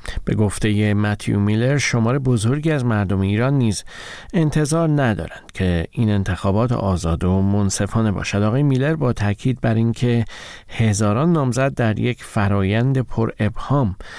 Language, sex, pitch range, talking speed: Persian, male, 100-130 Hz, 135 wpm